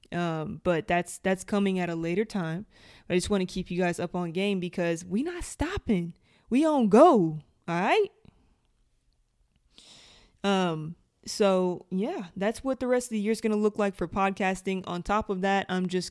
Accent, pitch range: American, 175-210 Hz